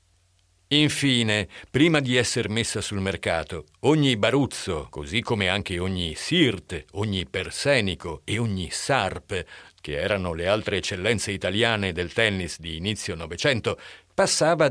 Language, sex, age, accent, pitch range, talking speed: Italian, male, 50-69, native, 90-135 Hz, 125 wpm